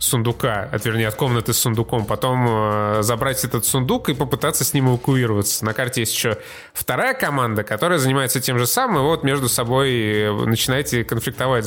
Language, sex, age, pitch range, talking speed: Russian, male, 20-39, 115-145 Hz, 175 wpm